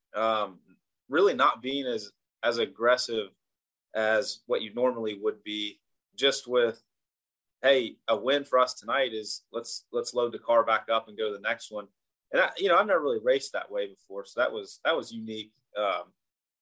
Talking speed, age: 190 wpm, 30-49